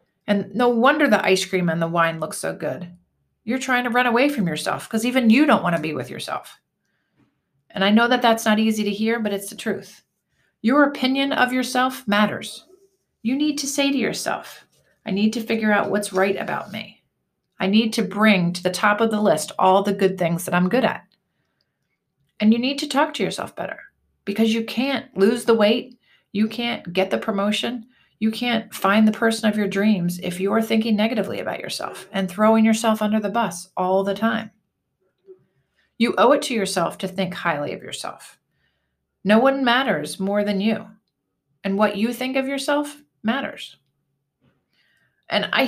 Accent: American